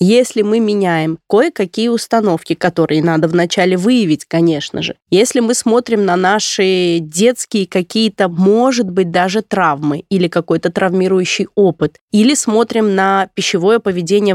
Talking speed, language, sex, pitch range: 130 wpm, Russian, female, 185-235 Hz